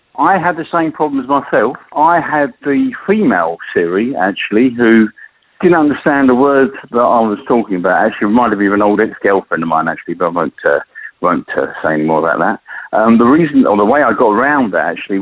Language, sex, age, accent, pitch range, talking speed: English, male, 50-69, British, 95-135 Hz, 215 wpm